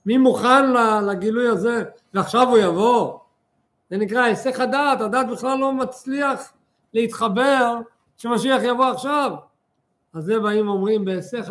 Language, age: Hebrew, 50-69